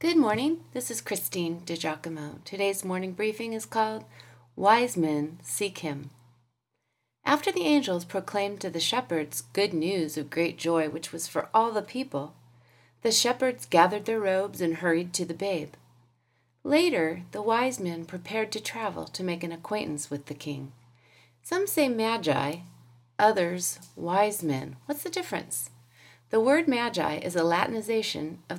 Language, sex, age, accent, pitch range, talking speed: English, female, 40-59, American, 145-220 Hz, 155 wpm